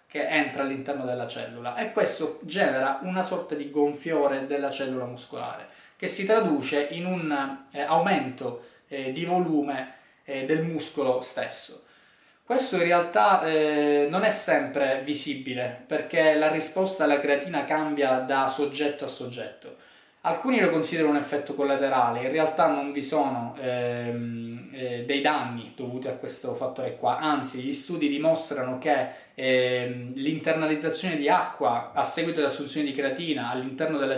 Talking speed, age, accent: 145 wpm, 20-39, native